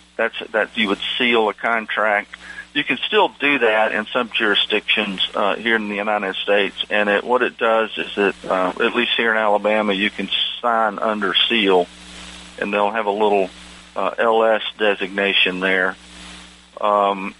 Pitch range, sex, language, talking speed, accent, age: 95-115 Hz, male, English, 170 wpm, American, 50-69